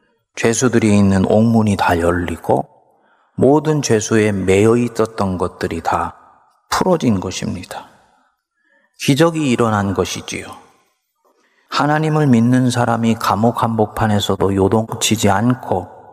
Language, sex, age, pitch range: Korean, male, 40-59, 100-125 Hz